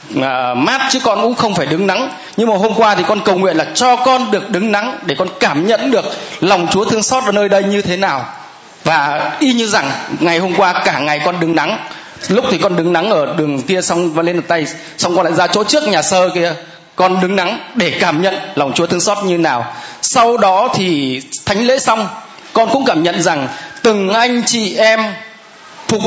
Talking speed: 225 wpm